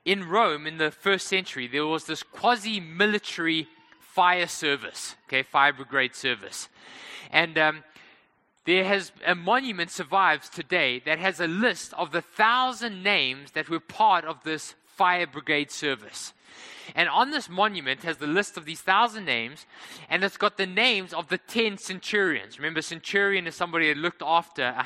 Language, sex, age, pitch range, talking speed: English, male, 20-39, 160-225 Hz, 165 wpm